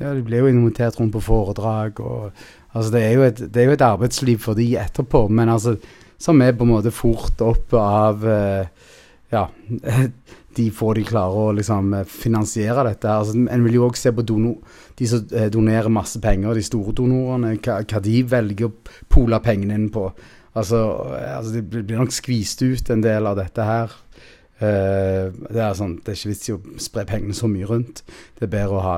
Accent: Norwegian